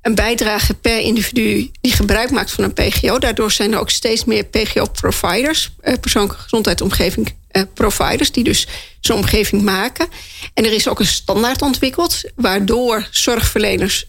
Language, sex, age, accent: Dutch, female, 40-59, Dutch